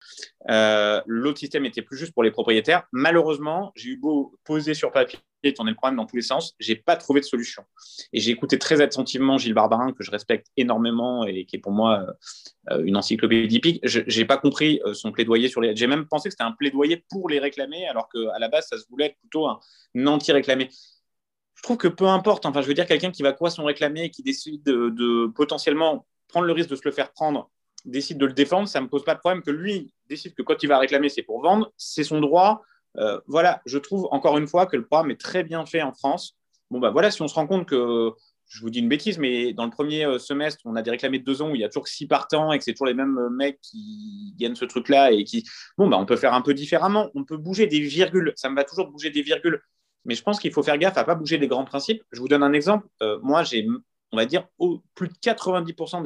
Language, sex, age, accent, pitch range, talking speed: French, male, 30-49, French, 125-170 Hz, 260 wpm